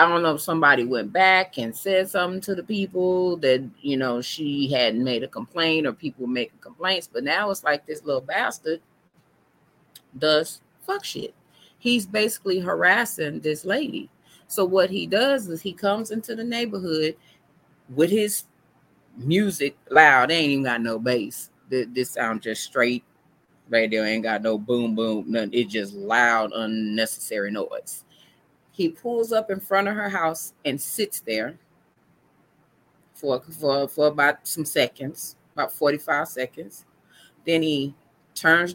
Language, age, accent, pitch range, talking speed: English, 30-49, American, 135-195 Hz, 155 wpm